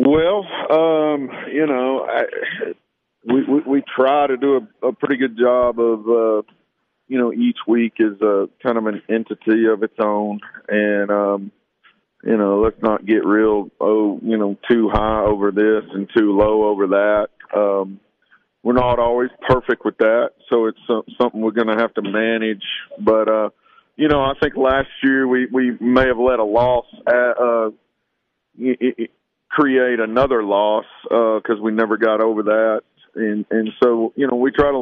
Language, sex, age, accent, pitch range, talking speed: English, male, 40-59, American, 110-130 Hz, 180 wpm